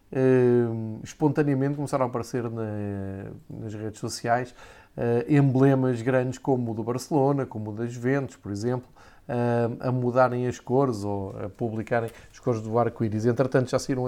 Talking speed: 160 wpm